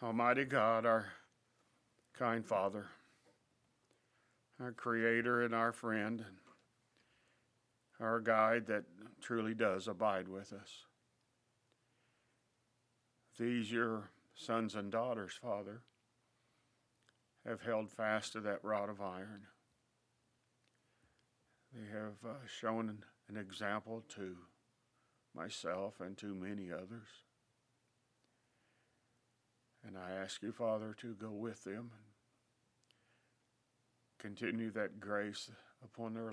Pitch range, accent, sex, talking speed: 105-120 Hz, American, male, 95 wpm